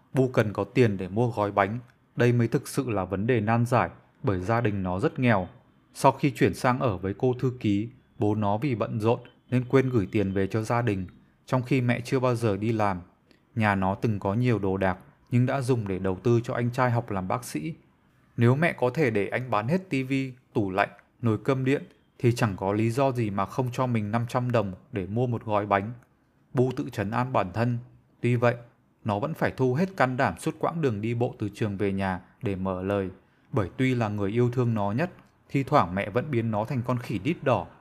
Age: 20-39